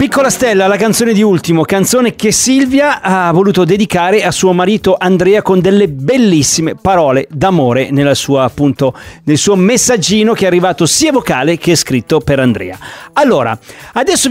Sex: male